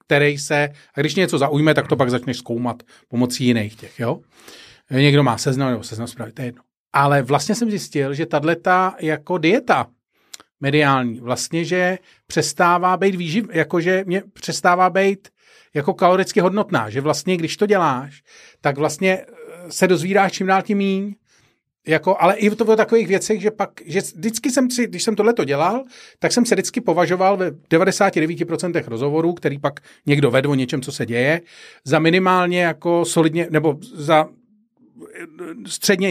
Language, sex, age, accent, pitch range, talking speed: Czech, male, 40-59, native, 145-195 Hz, 160 wpm